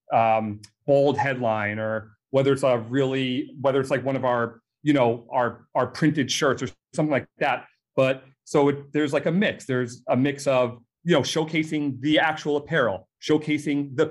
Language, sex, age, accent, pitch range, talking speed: English, male, 30-49, American, 120-150 Hz, 180 wpm